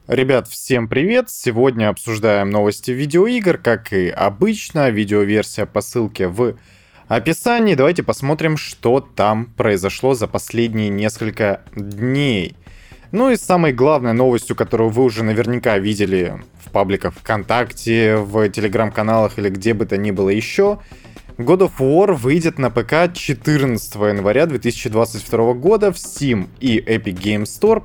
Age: 20-39